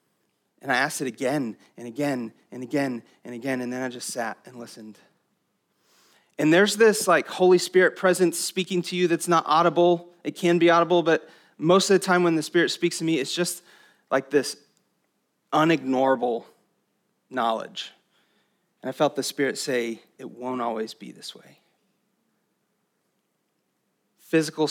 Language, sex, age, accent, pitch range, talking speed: English, male, 30-49, American, 135-180 Hz, 160 wpm